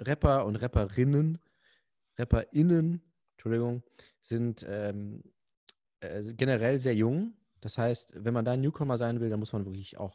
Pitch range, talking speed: 105-125 Hz, 150 wpm